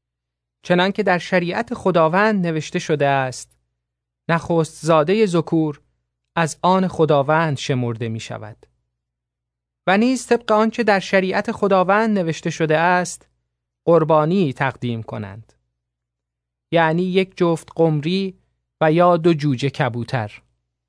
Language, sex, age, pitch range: Persian, male, 30-49, 120-180 Hz